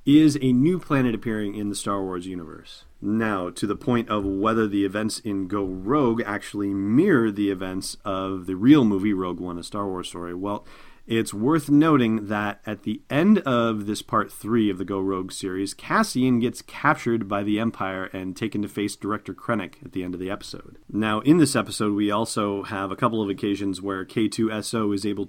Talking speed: 200 wpm